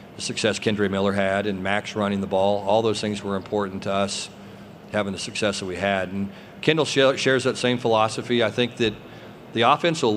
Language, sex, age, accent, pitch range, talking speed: English, male, 40-59, American, 100-110 Hz, 200 wpm